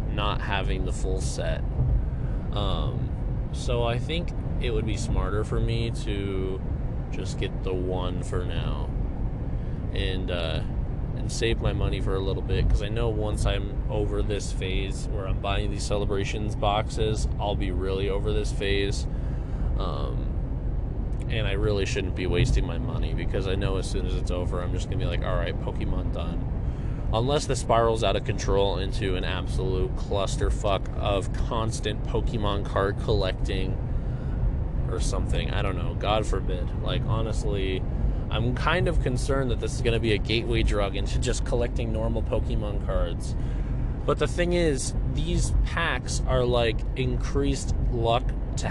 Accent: American